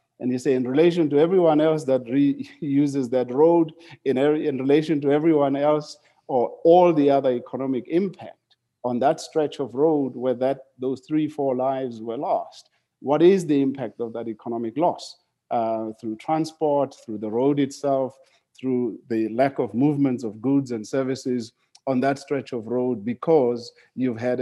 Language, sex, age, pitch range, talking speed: English, male, 50-69, 120-145 Hz, 175 wpm